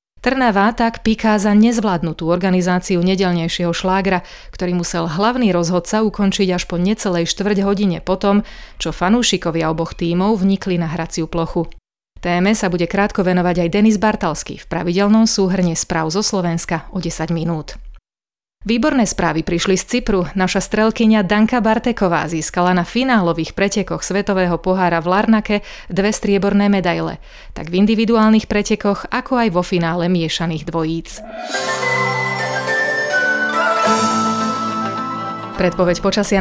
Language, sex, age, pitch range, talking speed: Slovak, female, 30-49, 175-220 Hz, 125 wpm